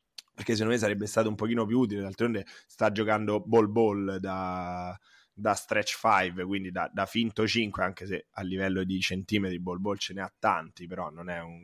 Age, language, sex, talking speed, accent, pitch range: 20-39, Italian, male, 190 wpm, native, 100-120 Hz